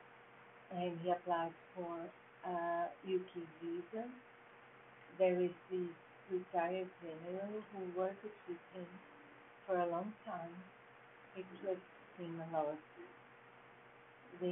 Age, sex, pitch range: 50-69, female, 170-185 Hz